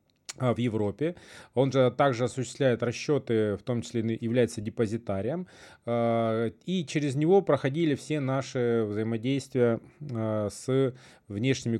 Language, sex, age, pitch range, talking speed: Russian, male, 30-49, 115-145 Hz, 115 wpm